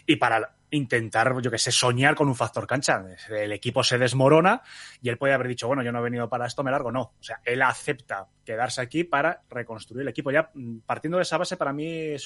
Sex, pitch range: male, 120-155 Hz